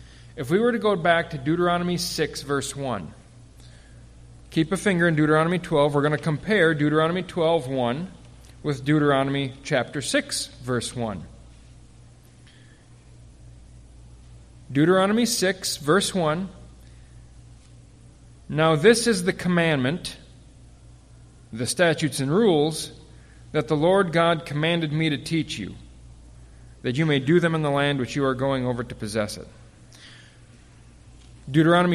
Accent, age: American, 40-59